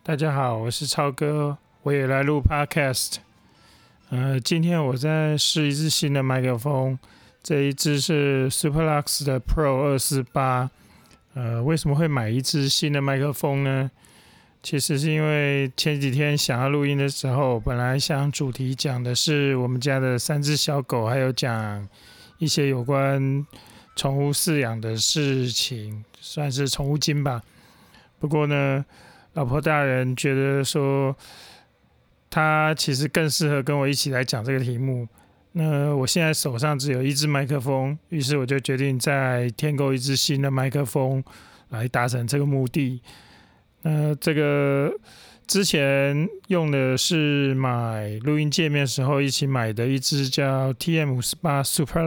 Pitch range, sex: 130-150 Hz, male